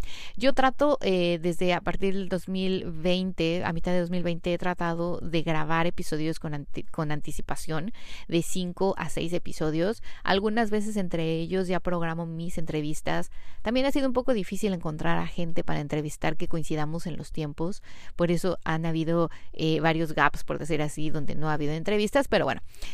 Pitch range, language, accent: 160-190 Hz, Spanish, Mexican